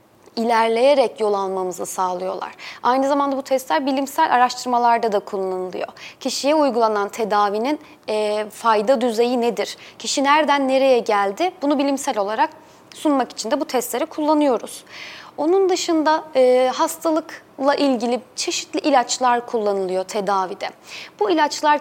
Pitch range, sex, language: 220-295 Hz, female, Turkish